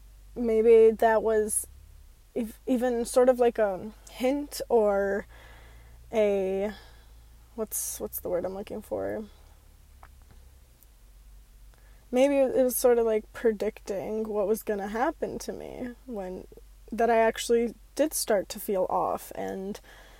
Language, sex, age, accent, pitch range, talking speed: English, female, 20-39, American, 200-240 Hz, 120 wpm